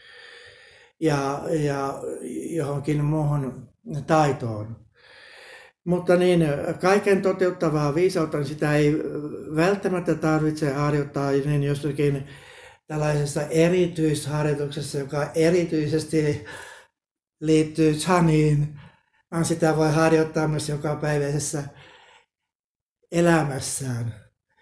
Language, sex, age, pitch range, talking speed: Finnish, male, 60-79, 140-160 Hz, 70 wpm